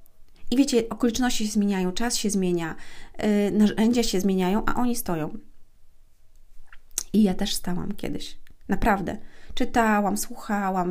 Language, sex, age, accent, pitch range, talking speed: Polish, female, 30-49, native, 180-215 Hz, 125 wpm